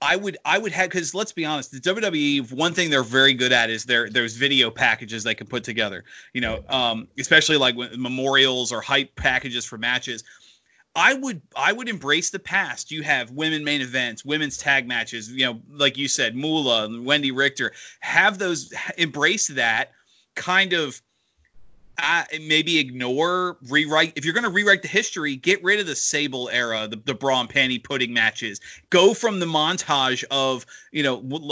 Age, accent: 30-49, American